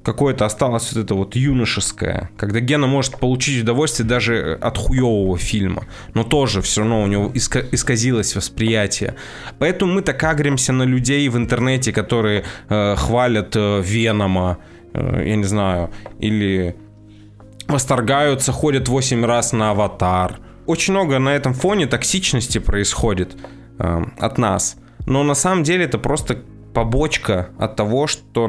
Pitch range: 105-140 Hz